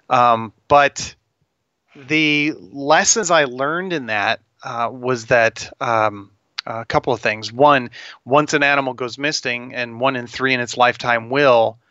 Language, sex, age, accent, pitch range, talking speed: English, male, 30-49, American, 115-145 Hz, 150 wpm